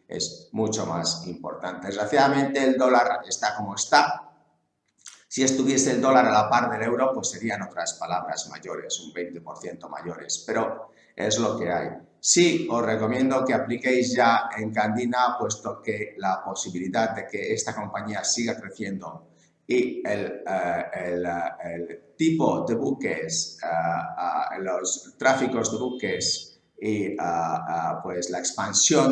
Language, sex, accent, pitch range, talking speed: English, male, Spanish, 95-130 Hz, 145 wpm